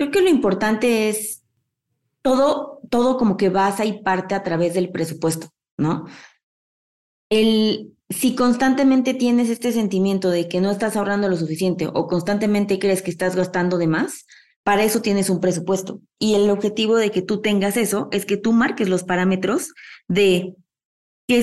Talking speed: 165 wpm